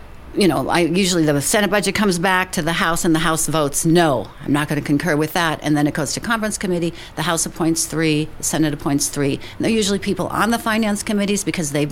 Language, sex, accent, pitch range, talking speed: English, female, American, 140-165 Hz, 245 wpm